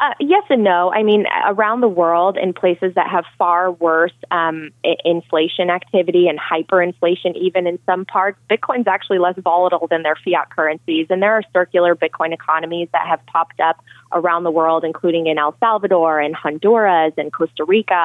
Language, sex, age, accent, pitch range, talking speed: English, female, 20-39, American, 165-185 Hz, 180 wpm